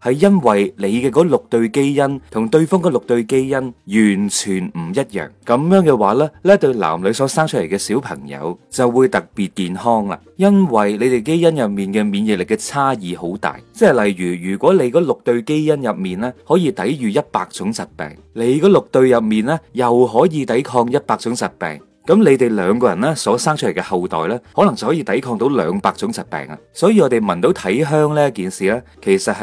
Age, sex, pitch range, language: 30-49, male, 100-160 Hz, Chinese